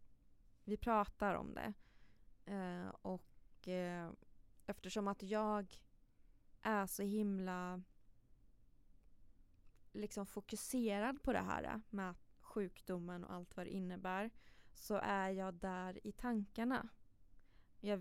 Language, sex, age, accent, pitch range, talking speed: Swedish, female, 20-39, native, 180-210 Hz, 95 wpm